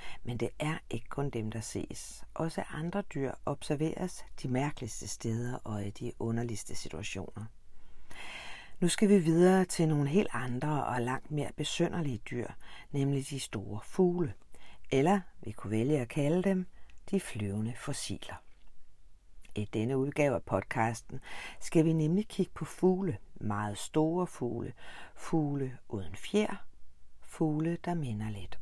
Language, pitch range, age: Danish, 110-170 Hz, 60-79